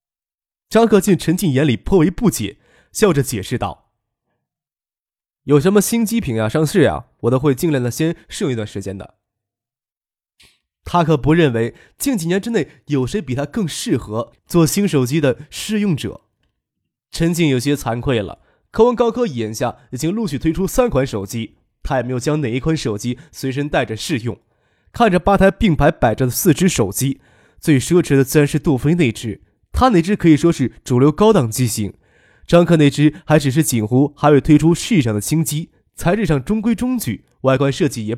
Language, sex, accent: Chinese, male, native